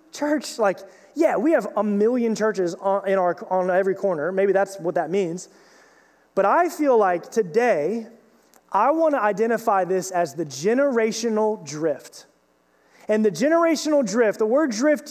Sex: male